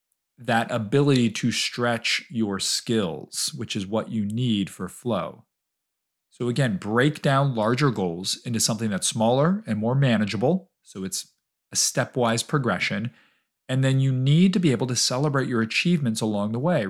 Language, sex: English, male